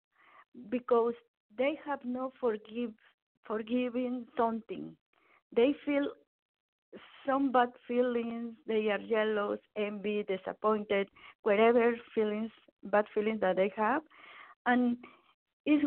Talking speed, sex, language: 100 wpm, female, English